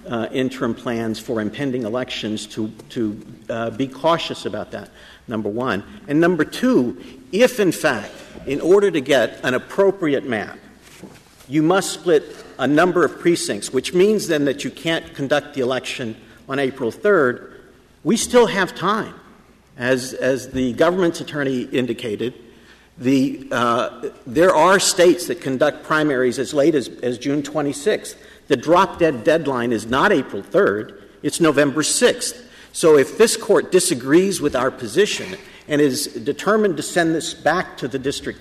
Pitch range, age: 125-175 Hz, 50-69